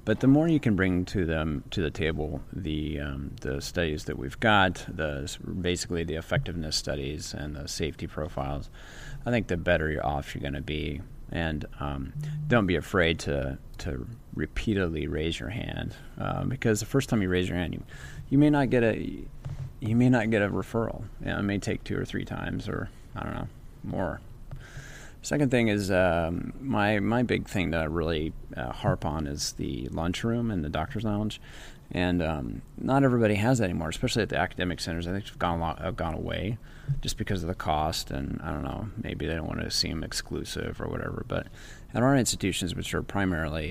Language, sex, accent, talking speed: English, male, American, 205 wpm